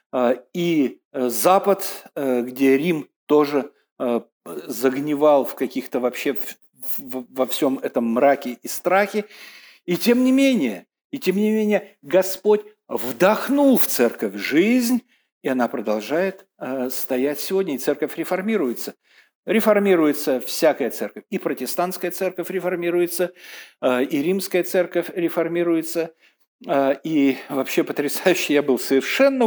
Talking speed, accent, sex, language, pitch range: 110 wpm, native, male, Russian, 130-185 Hz